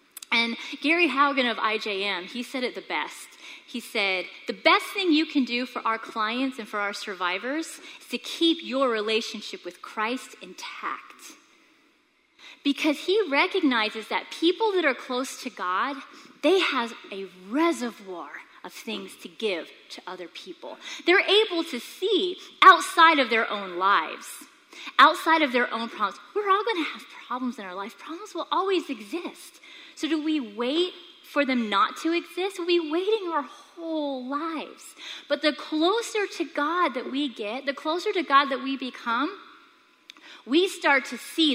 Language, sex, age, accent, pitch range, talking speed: English, female, 30-49, American, 235-335 Hz, 165 wpm